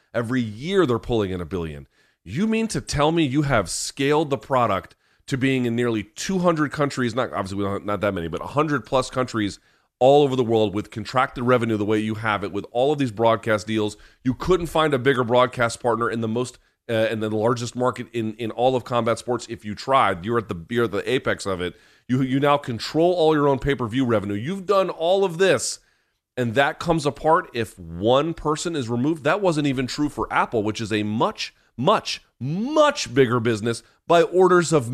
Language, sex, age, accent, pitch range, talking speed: English, male, 30-49, American, 115-150 Hz, 210 wpm